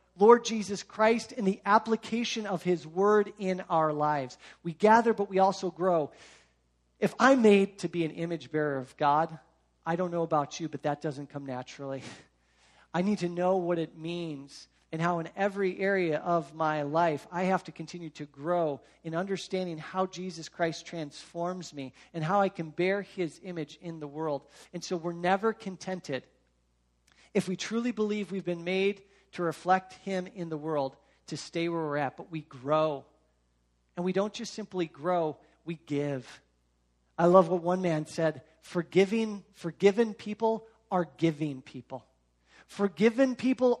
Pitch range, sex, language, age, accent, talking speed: 155-205 Hz, male, English, 40-59, American, 170 wpm